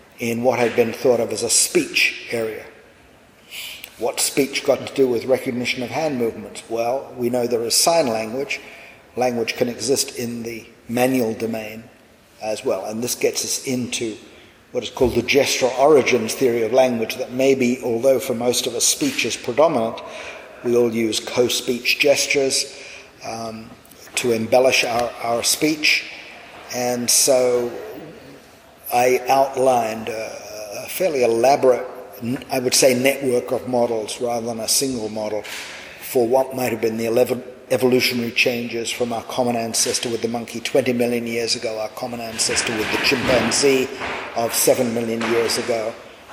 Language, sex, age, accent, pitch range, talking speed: English, male, 50-69, British, 115-130 Hz, 155 wpm